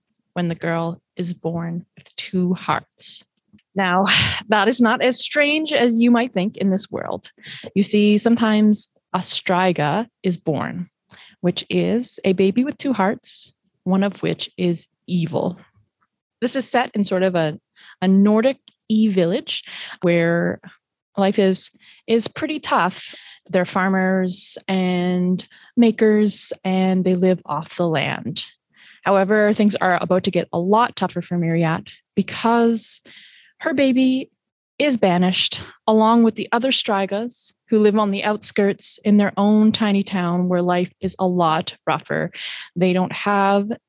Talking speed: 145 wpm